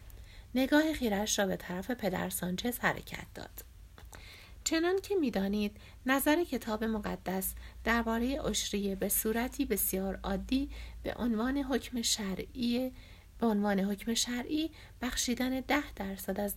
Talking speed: 120 wpm